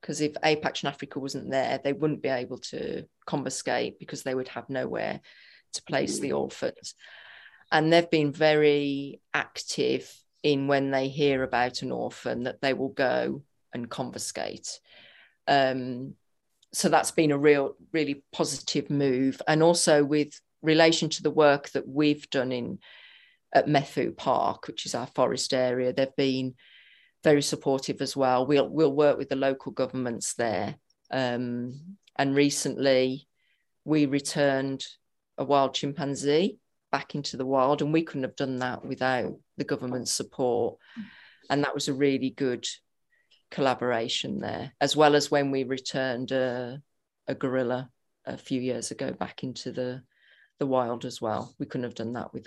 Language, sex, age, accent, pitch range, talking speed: English, female, 40-59, British, 130-145 Hz, 160 wpm